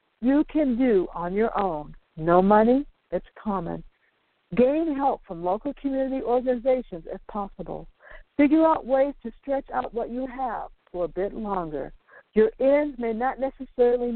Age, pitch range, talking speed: 60-79, 190-270 Hz, 155 wpm